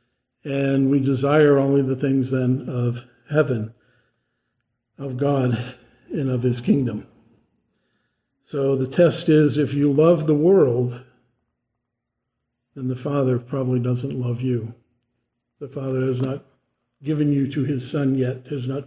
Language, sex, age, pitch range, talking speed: English, male, 50-69, 125-160 Hz, 135 wpm